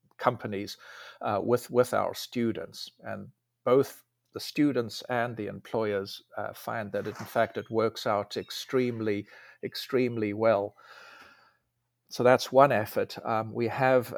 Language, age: English, 50-69